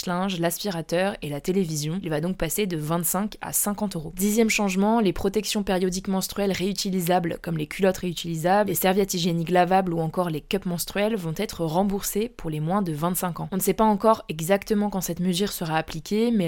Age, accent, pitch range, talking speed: 20-39, French, 165-200 Hz, 200 wpm